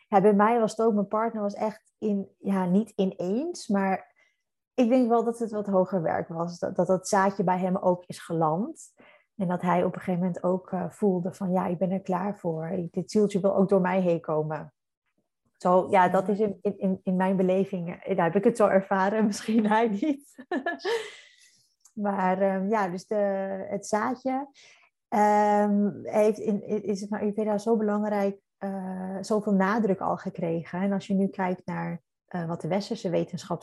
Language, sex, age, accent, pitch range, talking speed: Dutch, female, 30-49, Dutch, 180-210 Hz, 200 wpm